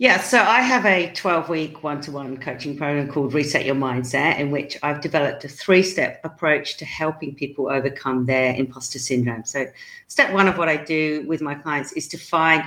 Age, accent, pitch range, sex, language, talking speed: 40-59, British, 130-170 Hz, female, English, 190 wpm